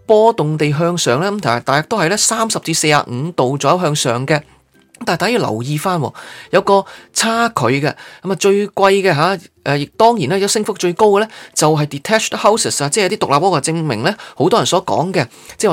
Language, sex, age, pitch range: Chinese, male, 20-39, 140-200 Hz